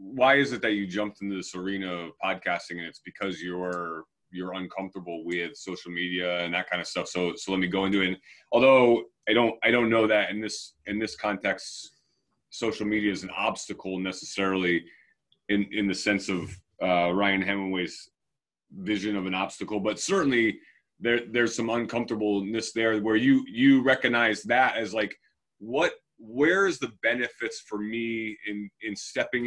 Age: 30-49